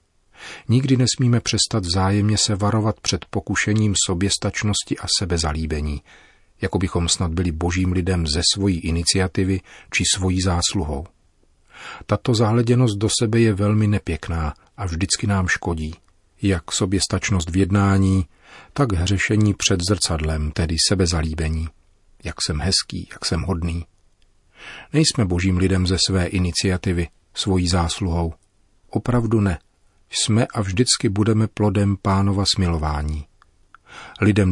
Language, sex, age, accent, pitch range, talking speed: Czech, male, 40-59, native, 85-105 Hz, 120 wpm